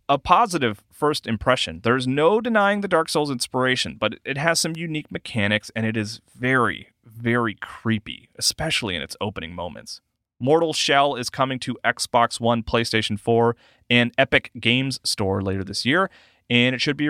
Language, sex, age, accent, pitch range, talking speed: English, male, 30-49, American, 105-140 Hz, 170 wpm